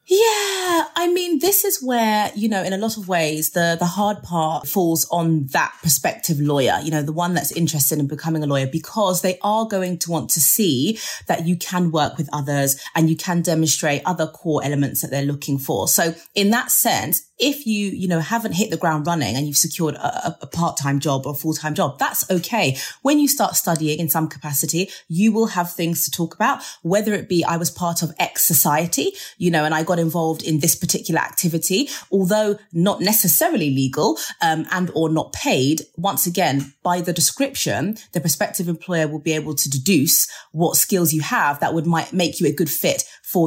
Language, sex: English, female